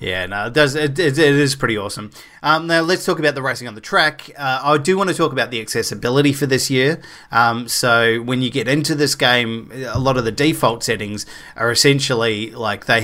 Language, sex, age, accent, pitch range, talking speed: English, male, 20-39, Australian, 120-150 Hz, 225 wpm